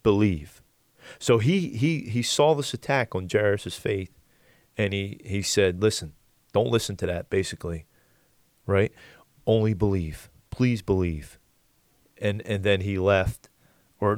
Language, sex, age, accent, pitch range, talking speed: English, male, 30-49, American, 95-110 Hz, 135 wpm